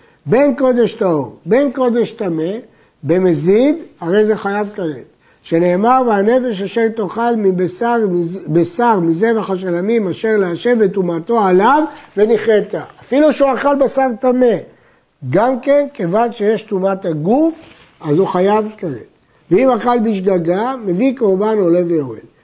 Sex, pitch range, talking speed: male, 175-230 Hz, 125 wpm